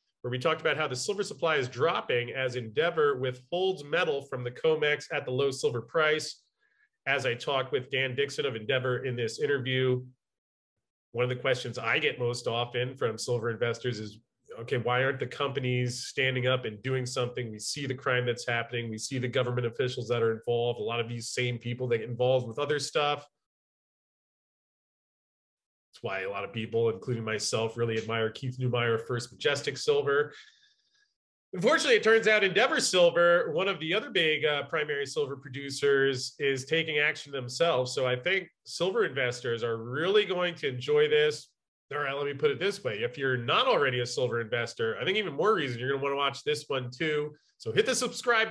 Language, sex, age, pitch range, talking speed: English, male, 30-49, 125-175 Hz, 195 wpm